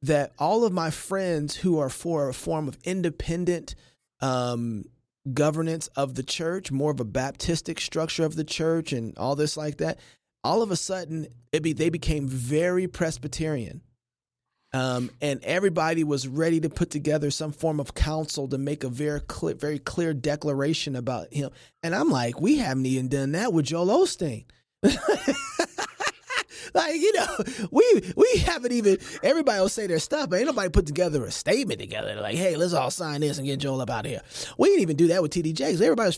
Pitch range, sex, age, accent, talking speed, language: 135-180 Hz, male, 30-49, American, 190 wpm, English